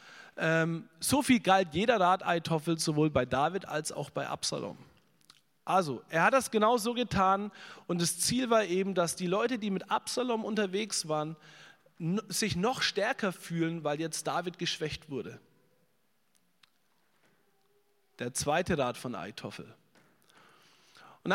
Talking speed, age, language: 135 wpm, 40-59, German